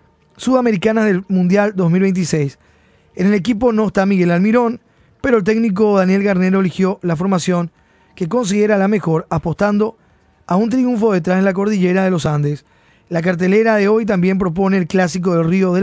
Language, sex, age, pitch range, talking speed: Spanish, male, 20-39, 185-220 Hz, 170 wpm